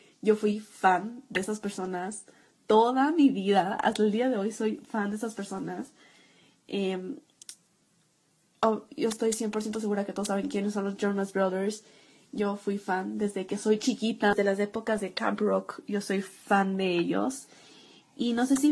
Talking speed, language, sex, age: 175 wpm, Spanish, female, 20-39